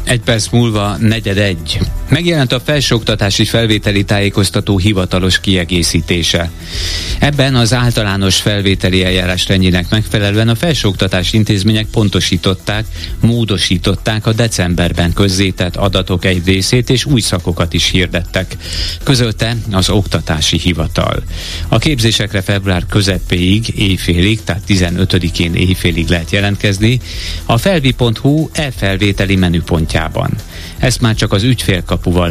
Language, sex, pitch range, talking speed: Hungarian, male, 90-110 Hz, 110 wpm